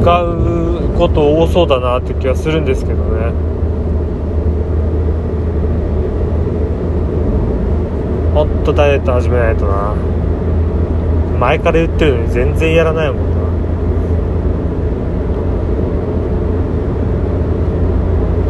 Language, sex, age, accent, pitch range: Japanese, male, 30-49, native, 85-90 Hz